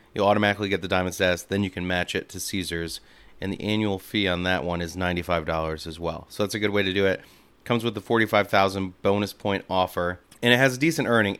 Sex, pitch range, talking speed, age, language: male, 90-105 Hz, 245 wpm, 30-49, English